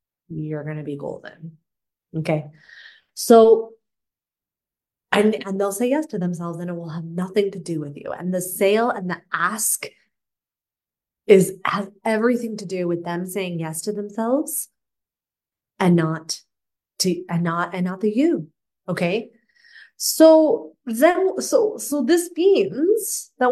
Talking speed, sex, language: 145 wpm, female, English